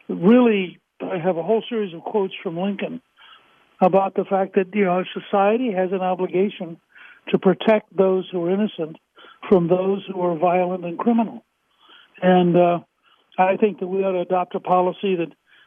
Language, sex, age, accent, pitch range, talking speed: English, male, 60-79, American, 180-210 Hz, 170 wpm